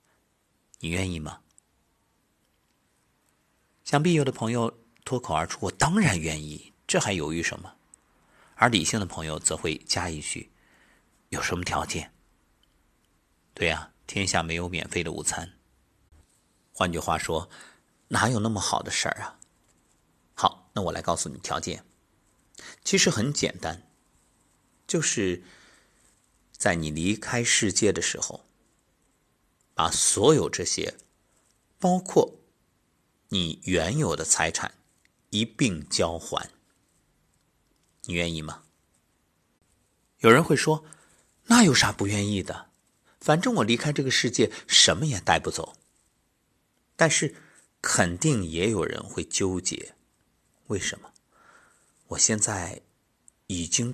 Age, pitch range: 50-69, 85-125 Hz